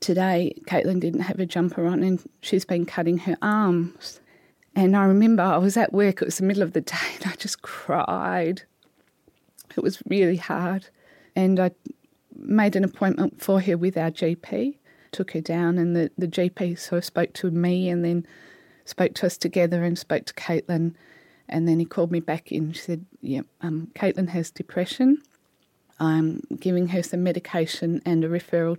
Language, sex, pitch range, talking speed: English, female, 170-195 Hz, 190 wpm